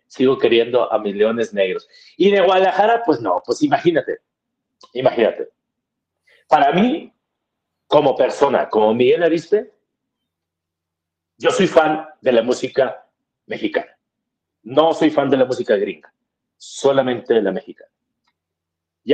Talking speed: 125 wpm